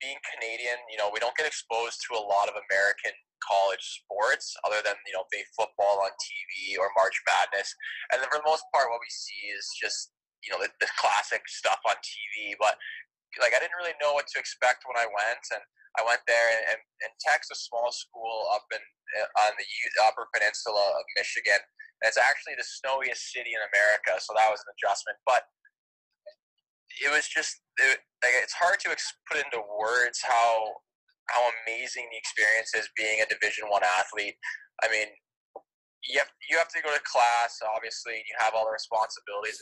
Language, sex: English, male